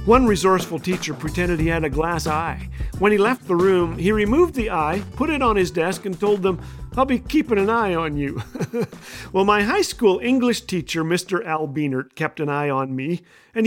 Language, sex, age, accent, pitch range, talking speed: English, male, 50-69, American, 155-210 Hz, 210 wpm